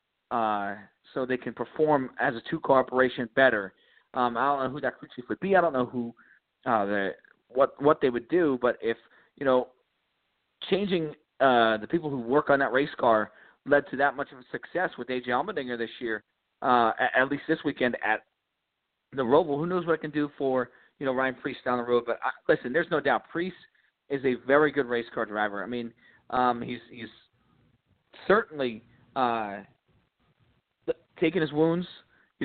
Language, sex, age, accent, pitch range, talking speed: English, male, 40-59, American, 125-155 Hz, 195 wpm